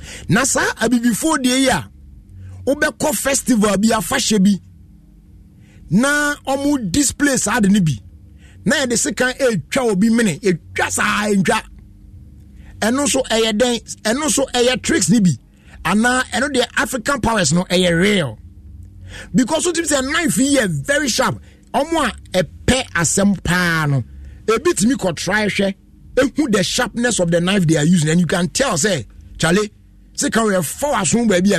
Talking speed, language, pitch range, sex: 170 wpm, English, 140-235 Hz, male